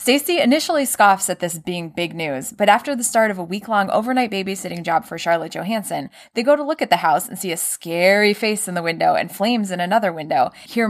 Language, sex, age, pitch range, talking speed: English, female, 20-39, 165-215 Hz, 230 wpm